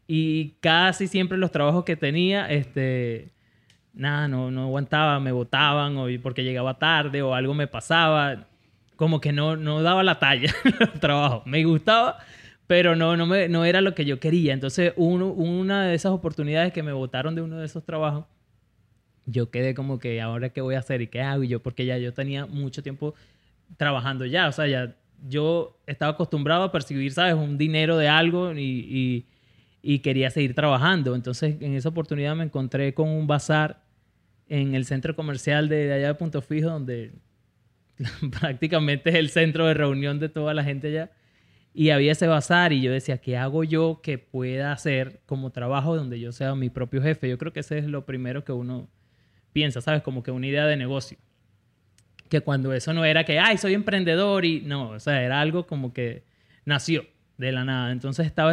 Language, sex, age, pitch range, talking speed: Spanish, male, 20-39, 130-160 Hz, 195 wpm